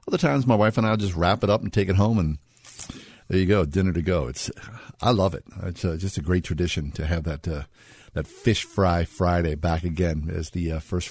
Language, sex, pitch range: English, male, 85-120 Hz